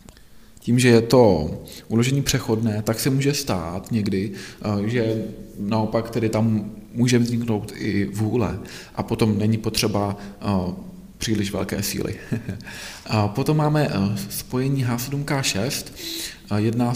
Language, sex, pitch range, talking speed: Czech, male, 105-125 Hz, 110 wpm